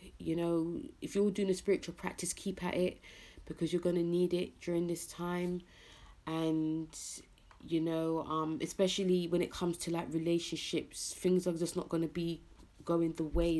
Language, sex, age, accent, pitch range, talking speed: English, female, 30-49, British, 160-185 Hz, 180 wpm